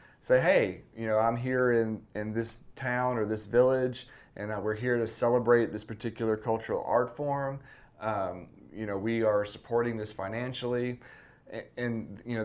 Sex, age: male, 30-49